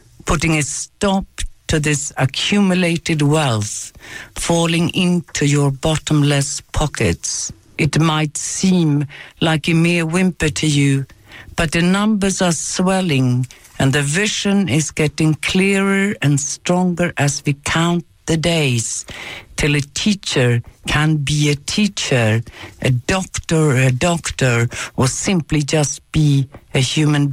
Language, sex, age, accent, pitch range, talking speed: English, female, 60-79, Swedish, 130-170 Hz, 125 wpm